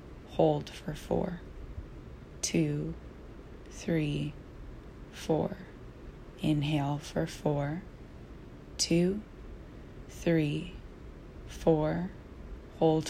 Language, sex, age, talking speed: English, female, 20-39, 60 wpm